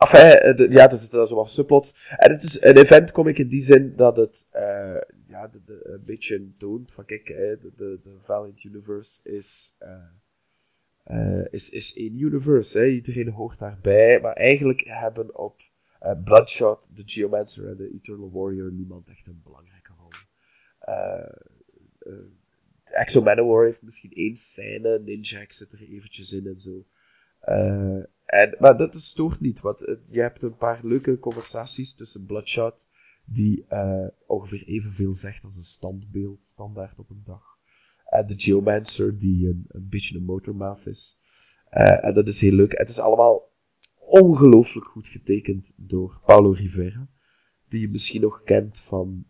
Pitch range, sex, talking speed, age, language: 100-120 Hz, male, 165 wpm, 20-39, English